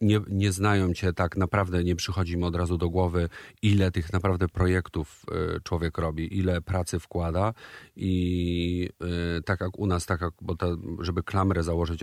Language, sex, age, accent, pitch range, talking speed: Polish, male, 40-59, native, 85-100 Hz, 165 wpm